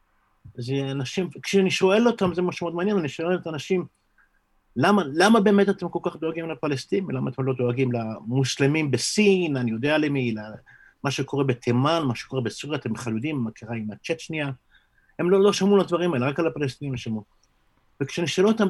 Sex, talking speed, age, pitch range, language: male, 180 wpm, 50-69, 125-175 Hz, Hebrew